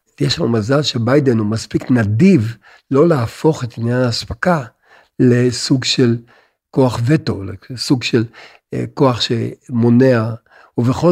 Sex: male